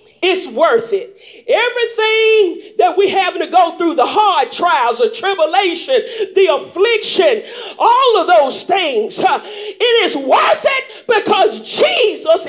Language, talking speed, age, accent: English, 130 wpm, 40-59, American